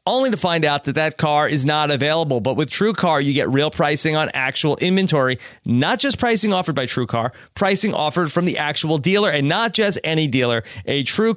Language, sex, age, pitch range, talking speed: English, male, 30-49, 145-190 Hz, 215 wpm